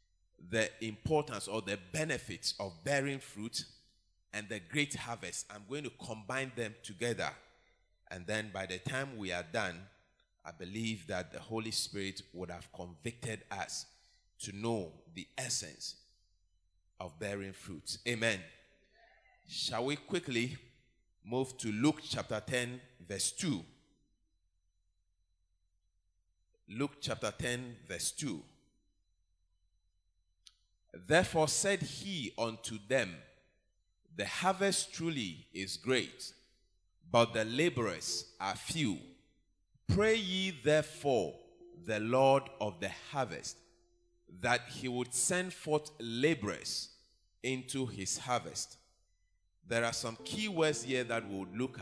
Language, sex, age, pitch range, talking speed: English, male, 30-49, 90-145 Hz, 115 wpm